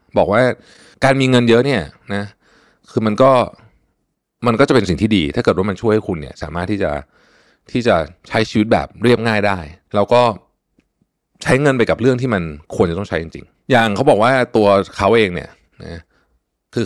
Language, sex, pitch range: Thai, male, 95-120 Hz